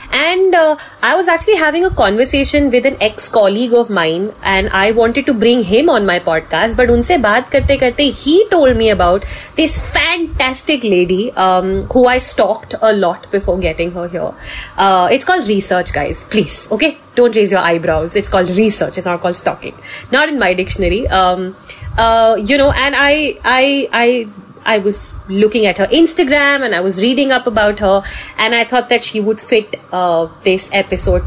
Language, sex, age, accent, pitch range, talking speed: English, female, 30-49, Indian, 190-255 Hz, 185 wpm